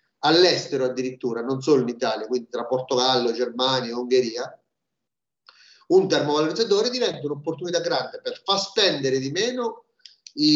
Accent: native